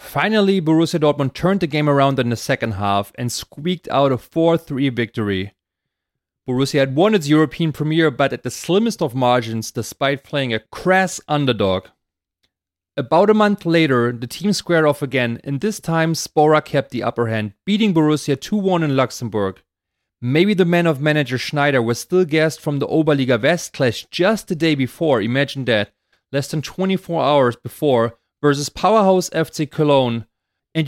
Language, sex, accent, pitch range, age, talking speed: English, male, German, 120-165 Hz, 30-49, 165 wpm